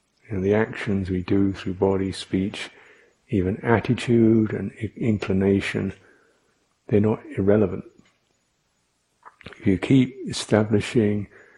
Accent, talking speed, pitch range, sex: British, 100 wpm, 100-115 Hz, male